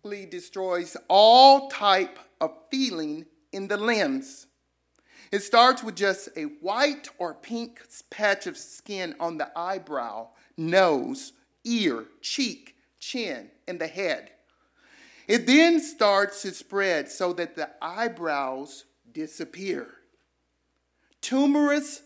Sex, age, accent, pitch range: male, 50-69, American, 165-265 Hz